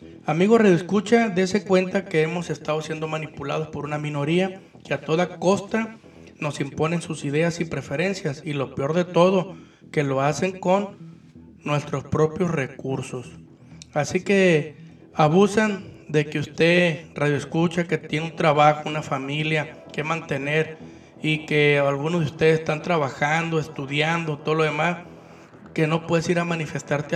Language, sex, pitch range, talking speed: Spanish, male, 145-175 Hz, 145 wpm